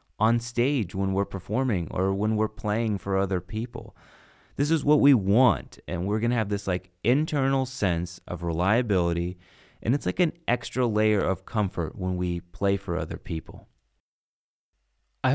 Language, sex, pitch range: English, male, 90-120 Hz